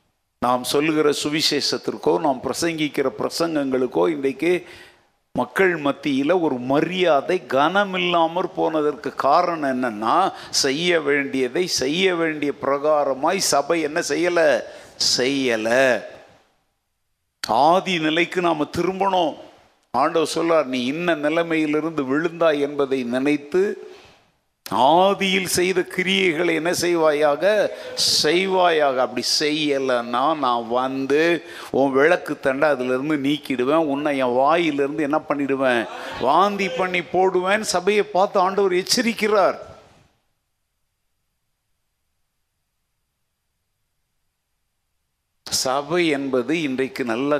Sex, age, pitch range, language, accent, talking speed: male, 50-69, 130-175 Hz, Tamil, native, 75 wpm